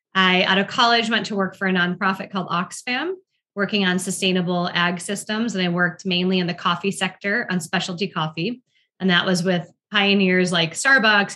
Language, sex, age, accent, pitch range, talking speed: English, female, 20-39, American, 175-215 Hz, 185 wpm